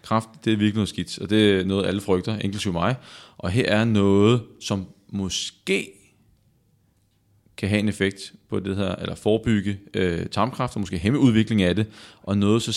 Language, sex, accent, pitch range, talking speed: Danish, male, native, 95-110 Hz, 185 wpm